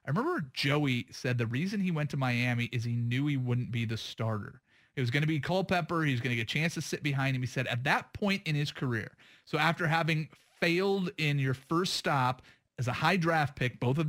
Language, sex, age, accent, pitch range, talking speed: English, male, 30-49, American, 125-155 Hz, 245 wpm